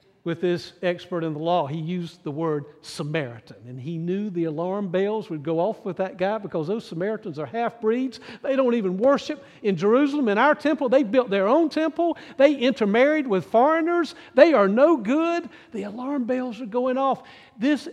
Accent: American